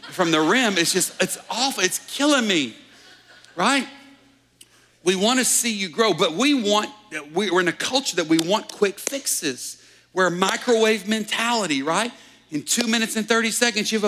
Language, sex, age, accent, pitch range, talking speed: English, male, 50-69, American, 155-225 Hz, 180 wpm